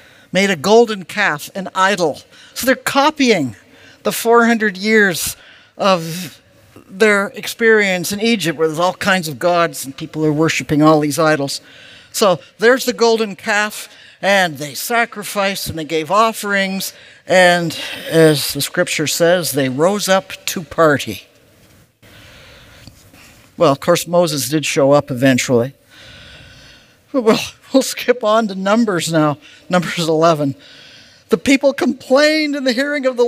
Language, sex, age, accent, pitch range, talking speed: English, male, 60-79, American, 155-230 Hz, 140 wpm